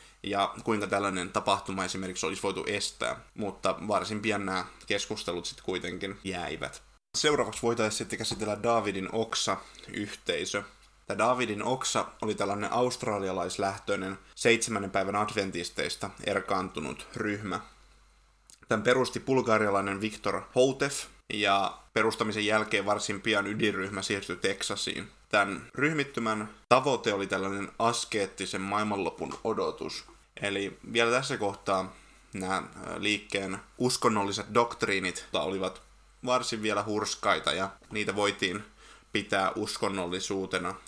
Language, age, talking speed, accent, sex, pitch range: Finnish, 20-39, 105 wpm, native, male, 95-110 Hz